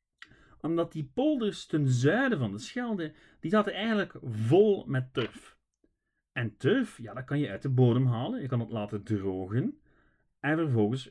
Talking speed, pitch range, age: 165 wpm, 115-160 Hz, 40-59